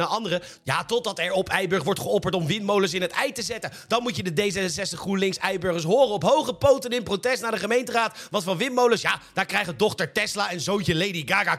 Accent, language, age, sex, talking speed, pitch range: Dutch, Dutch, 40-59, male, 215 wpm, 185-235 Hz